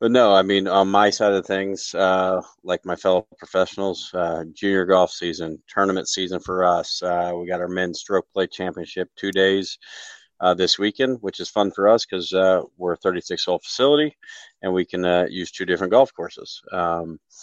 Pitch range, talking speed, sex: 90-100 Hz, 190 wpm, male